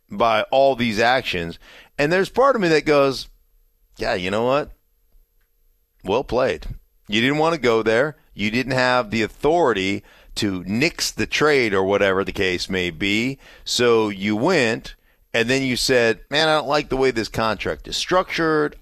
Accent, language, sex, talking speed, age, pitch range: American, English, male, 175 wpm, 40-59, 100-130 Hz